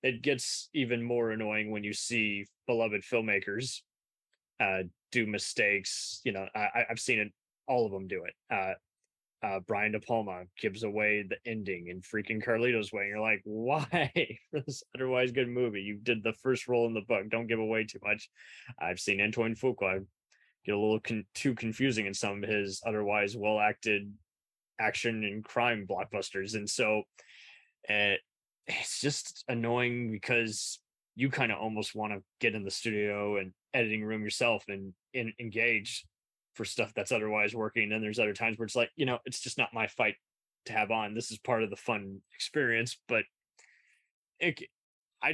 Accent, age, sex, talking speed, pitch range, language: American, 20-39, male, 180 wpm, 105-120 Hz, English